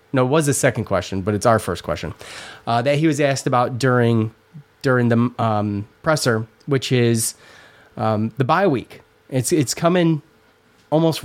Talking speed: 170 wpm